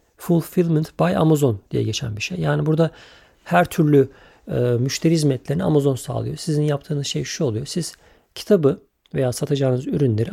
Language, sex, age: Turkish, male, 50-69